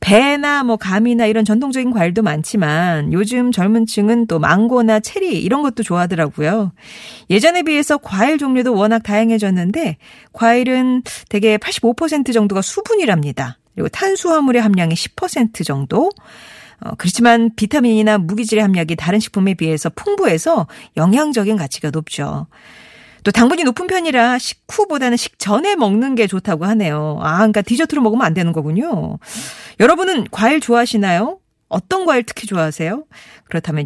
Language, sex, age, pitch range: Korean, female, 40-59, 190-270 Hz